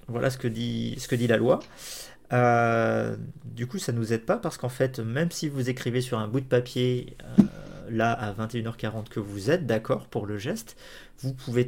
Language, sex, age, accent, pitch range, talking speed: French, male, 40-59, French, 110-135 Hz, 215 wpm